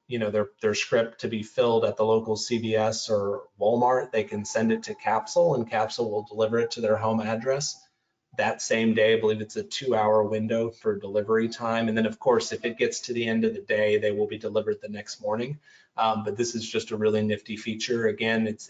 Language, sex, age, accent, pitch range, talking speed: English, male, 30-49, American, 110-120 Hz, 235 wpm